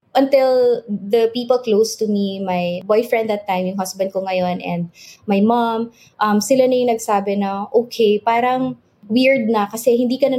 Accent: Filipino